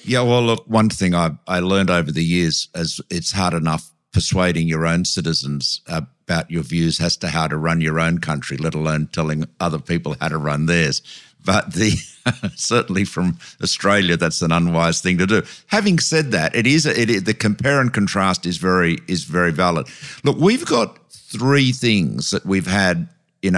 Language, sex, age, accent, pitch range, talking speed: English, male, 50-69, Australian, 85-100 Hz, 195 wpm